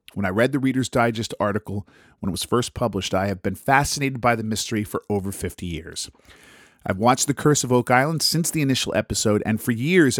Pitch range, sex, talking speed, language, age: 100-130 Hz, male, 220 wpm, English, 40-59